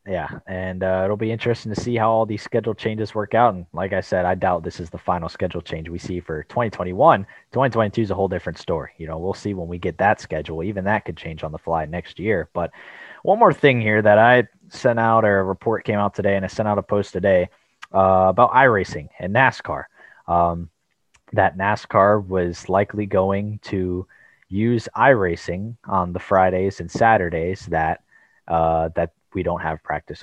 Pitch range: 90-110 Hz